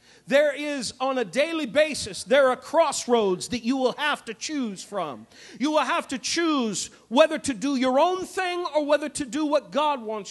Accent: American